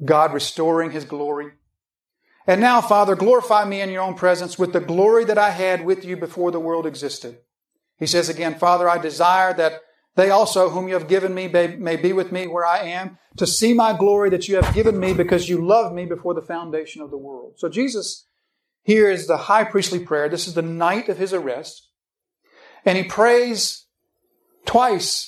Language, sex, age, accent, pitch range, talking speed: English, male, 50-69, American, 160-205 Hz, 200 wpm